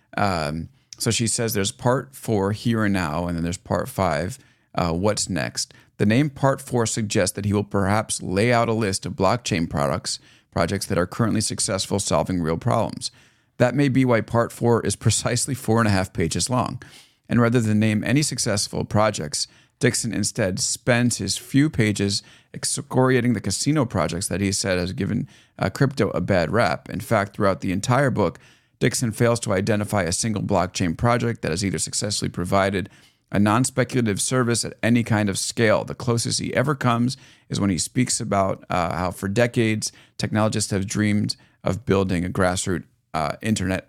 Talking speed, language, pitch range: 180 wpm, English, 95-120 Hz